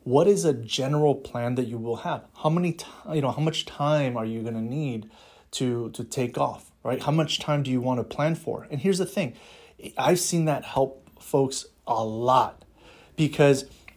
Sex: male